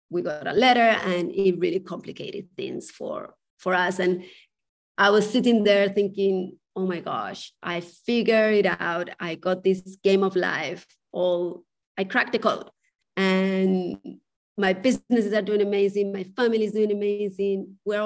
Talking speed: 160 wpm